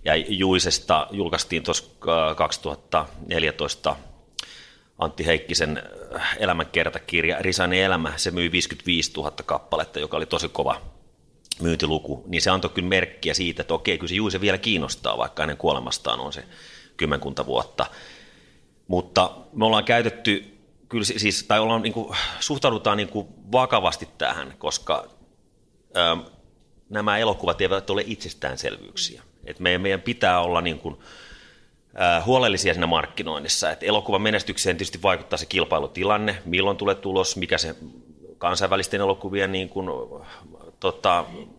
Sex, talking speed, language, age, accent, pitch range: male, 125 wpm, Finnish, 30-49, native, 85-100 Hz